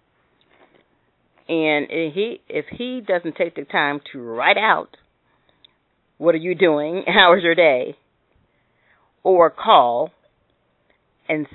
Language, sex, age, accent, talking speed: English, female, 40-59, American, 115 wpm